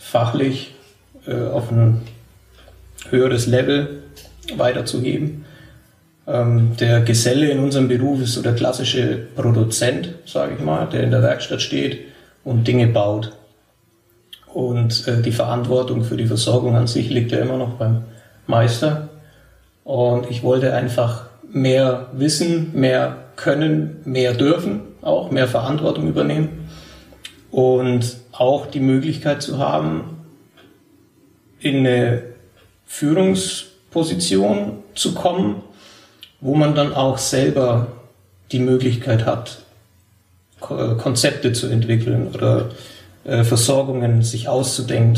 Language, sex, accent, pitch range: German, male, German, 115-130 Hz